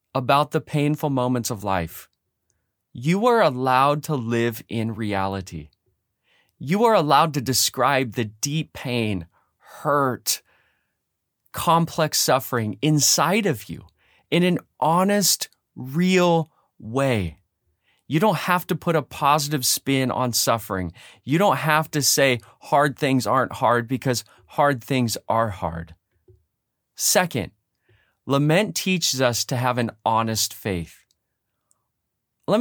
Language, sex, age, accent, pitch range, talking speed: English, male, 30-49, American, 110-155 Hz, 120 wpm